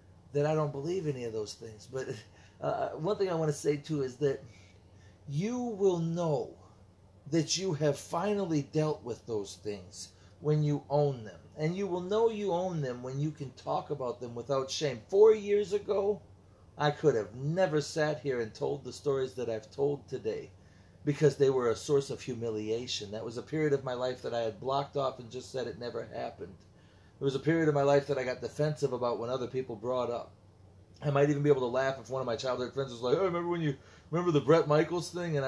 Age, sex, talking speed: 40-59, male, 225 wpm